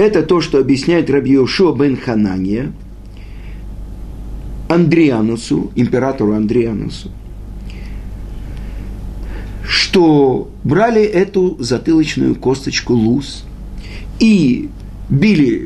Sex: male